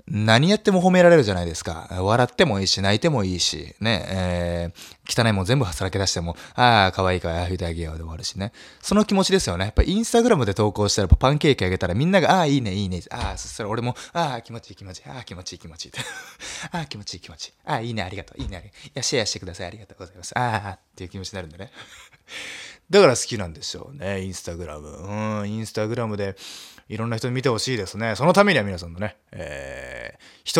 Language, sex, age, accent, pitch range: Japanese, male, 20-39, native, 90-125 Hz